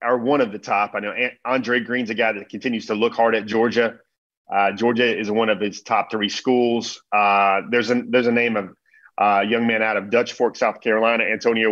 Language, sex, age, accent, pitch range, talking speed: English, male, 30-49, American, 110-130 Hz, 230 wpm